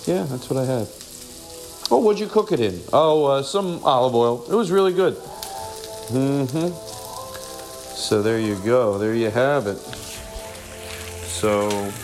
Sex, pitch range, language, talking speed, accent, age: male, 100-155 Hz, English, 150 wpm, American, 50-69